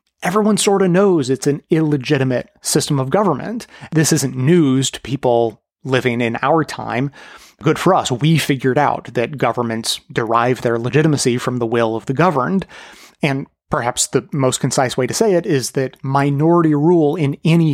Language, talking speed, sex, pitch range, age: English, 175 wpm, male, 135-165 Hz, 30-49